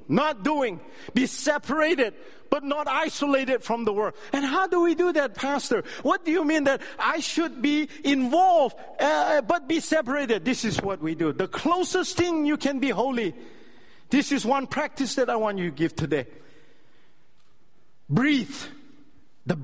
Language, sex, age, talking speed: English, male, 50-69, 170 wpm